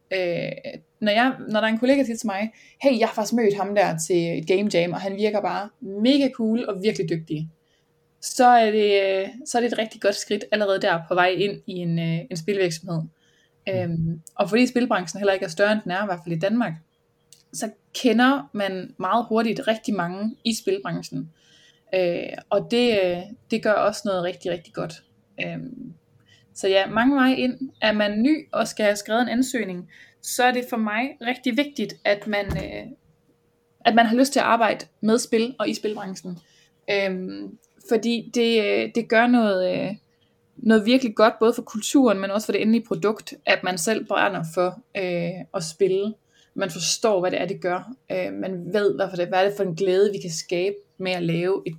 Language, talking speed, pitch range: Danish, 195 wpm, 180-230 Hz